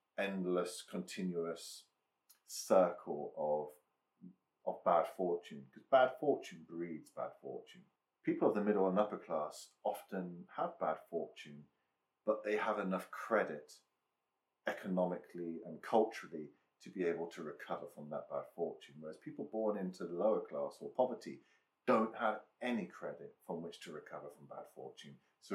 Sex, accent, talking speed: male, British, 145 wpm